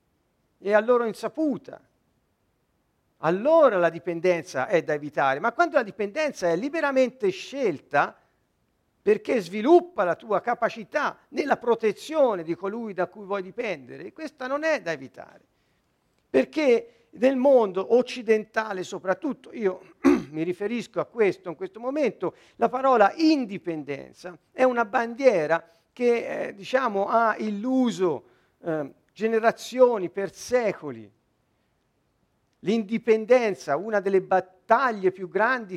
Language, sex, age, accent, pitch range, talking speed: Italian, male, 50-69, native, 185-255 Hz, 115 wpm